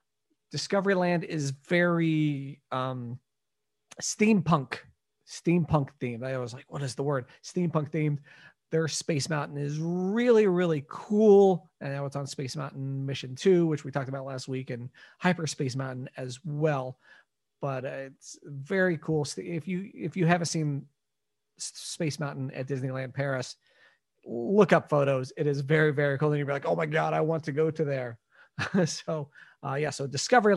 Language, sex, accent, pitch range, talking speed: English, male, American, 135-175 Hz, 165 wpm